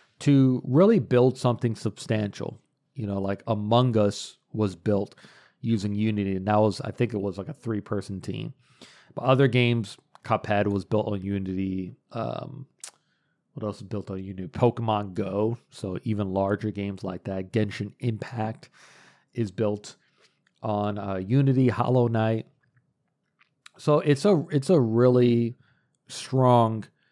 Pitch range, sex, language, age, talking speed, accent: 105-130 Hz, male, English, 40-59, 140 wpm, American